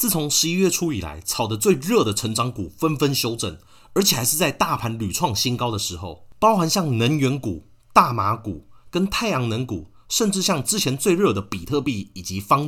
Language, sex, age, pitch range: Chinese, male, 30-49, 100-160 Hz